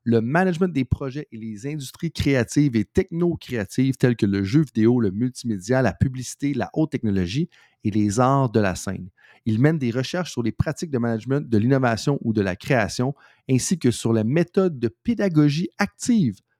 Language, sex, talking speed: French, male, 185 wpm